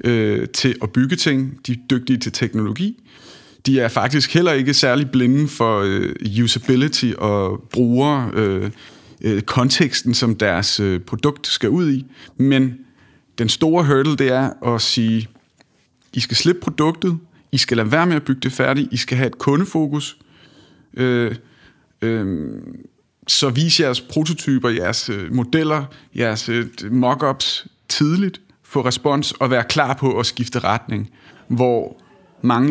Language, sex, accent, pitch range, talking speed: Danish, male, native, 115-145 Hz, 135 wpm